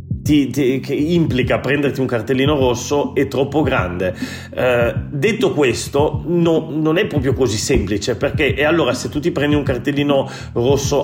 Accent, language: native, Italian